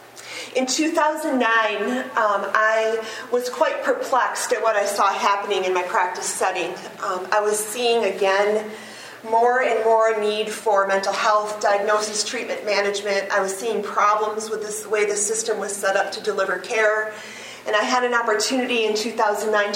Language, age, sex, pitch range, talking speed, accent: English, 40-59, female, 200-230 Hz, 160 wpm, American